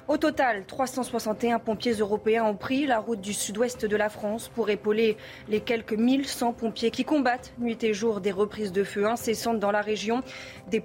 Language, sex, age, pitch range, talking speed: French, female, 20-39, 210-255 Hz, 190 wpm